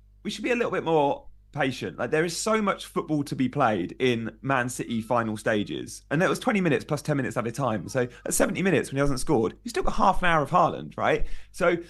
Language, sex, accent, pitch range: English, male, British, 135-190 Hz